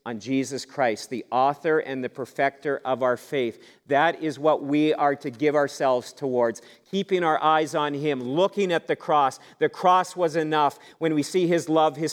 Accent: American